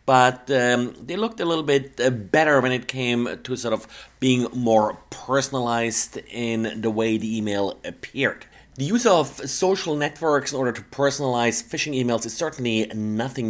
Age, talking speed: 30-49, 165 wpm